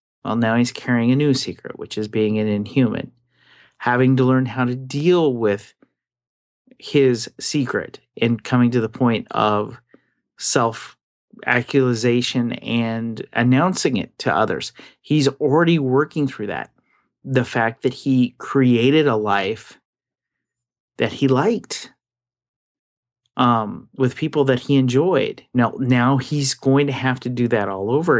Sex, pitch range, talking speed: male, 120-140 Hz, 140 wpm